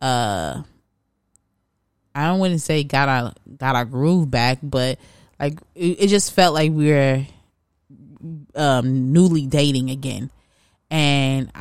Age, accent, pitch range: 20-39, American, 125-155 Hz